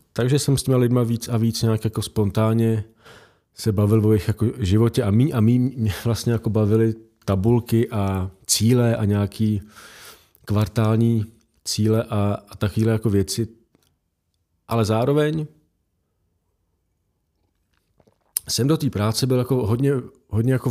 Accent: native